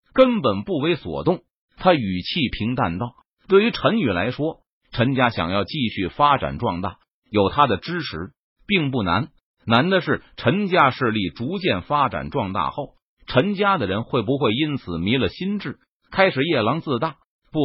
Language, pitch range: Chinese, 115-180 Hz